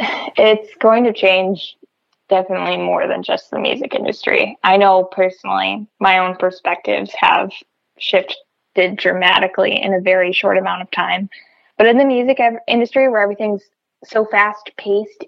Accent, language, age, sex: American, English, 10-29, female